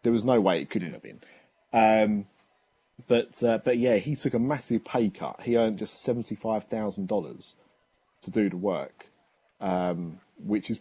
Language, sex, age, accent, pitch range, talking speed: English, male, 20-39, British, 95-110 Hz, 180 wpm